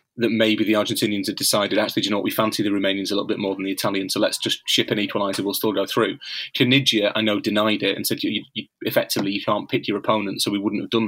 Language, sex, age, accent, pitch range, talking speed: English, male, 30-49, British, 105-115 Hz, 280 wpm